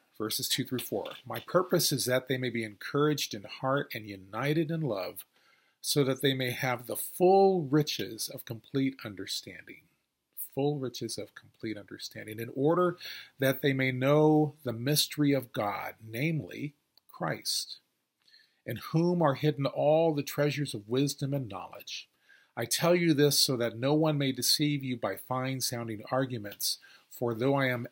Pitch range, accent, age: 115-145 Hz, American, 40-59